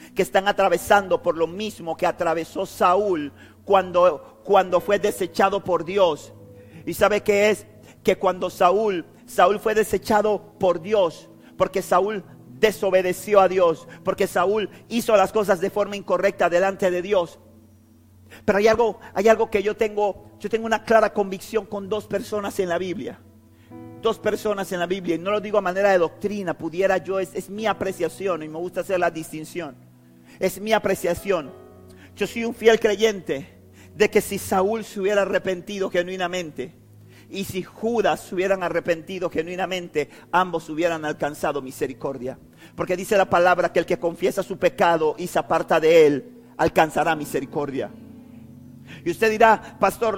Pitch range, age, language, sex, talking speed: 170-205 Hz, 50-69, Spanish, male, 160 wpm